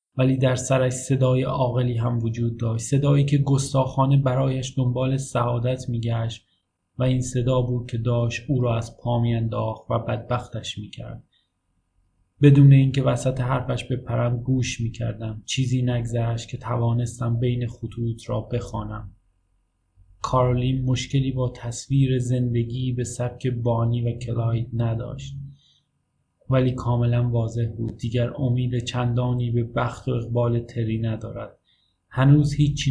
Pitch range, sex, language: 115-130 Hz, male, Persian